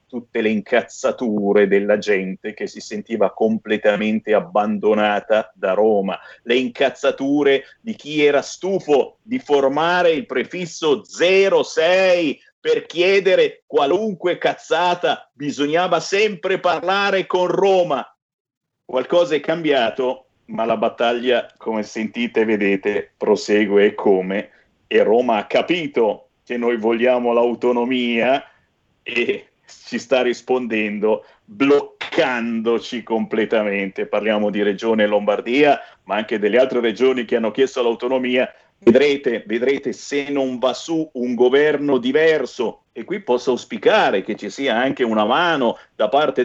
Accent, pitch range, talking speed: native, 115-155 Hz, 120 wpm